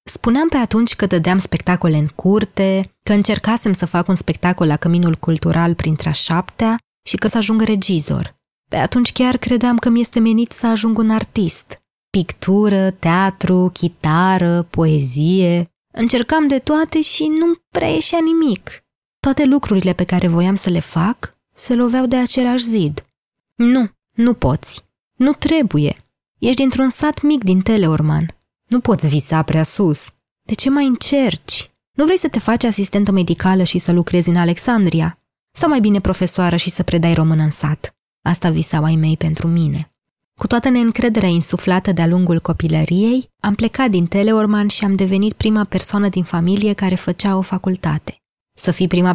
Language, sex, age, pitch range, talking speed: Romanian, female, 20-39, 170-230 Hz, 165 wpm